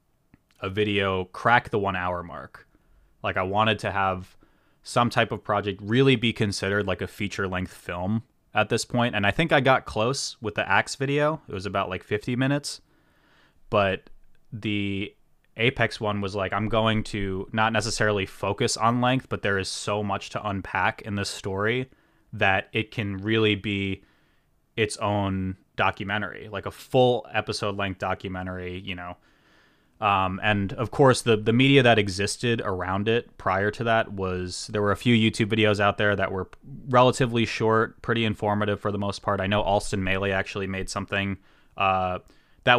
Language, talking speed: English, 175 wpm